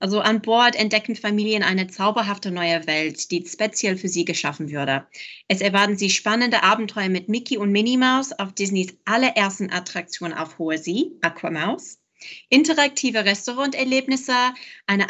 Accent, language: German, German